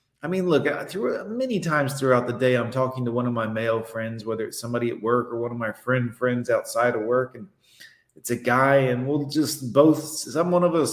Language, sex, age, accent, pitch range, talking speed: English, male, 30-49, American, 120-150 Hz, 235 wpm